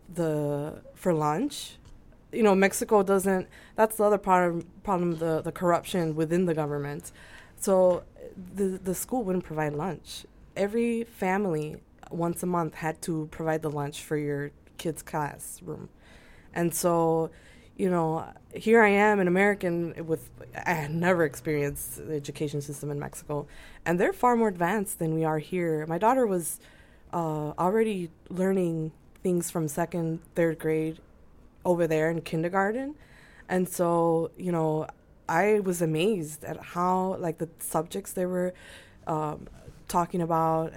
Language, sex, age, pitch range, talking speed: English, female, 20-39, 155-185 Hz, 150 wpm